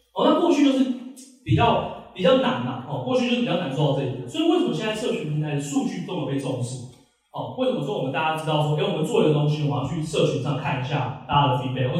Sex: male